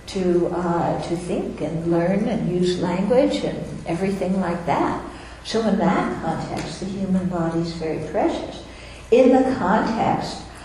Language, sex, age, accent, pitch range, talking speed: English, female, 60-79, American, 165-195 Hz, 145 wpm